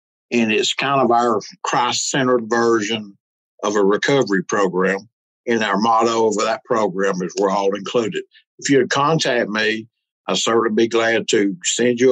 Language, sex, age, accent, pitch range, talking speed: English, male, 60-79, American, 110-140 Hz, 165 wpm